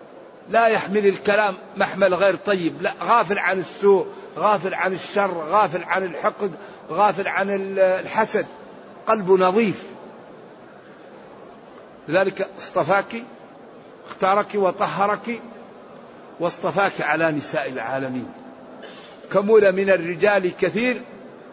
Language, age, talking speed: Arabic, 50-69, 90 wpm